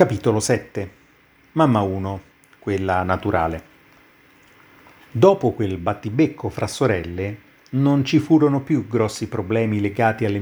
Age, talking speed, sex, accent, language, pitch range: 40-59, 110 wpm, male, native, Italian, 100-130 Hz